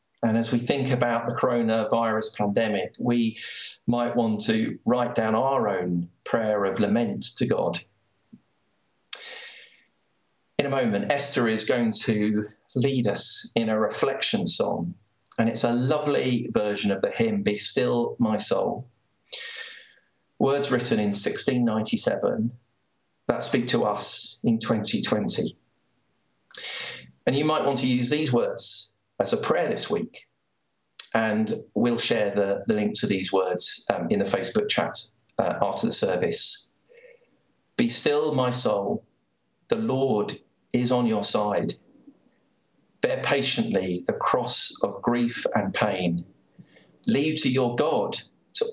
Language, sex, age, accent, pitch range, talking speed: English, male, 40-59, British, 110-140 Hz, 135 wpm